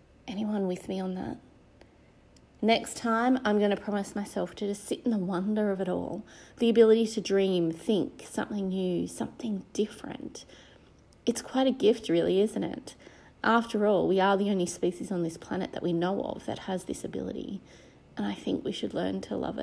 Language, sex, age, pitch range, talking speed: English, female, 30-49, 180-220 Hz, 195 wpm